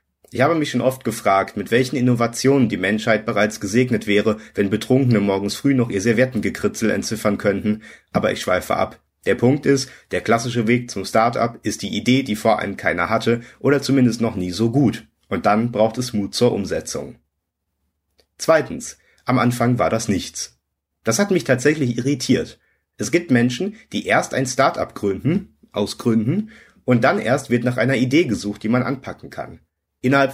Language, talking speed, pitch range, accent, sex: German, 175 wpm, 105-130 Hz, German, male